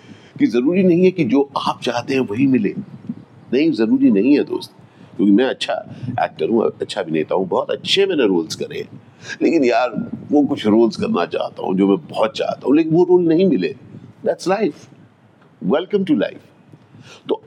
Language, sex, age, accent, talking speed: Hindi, male, 50-69, native, 85 wpm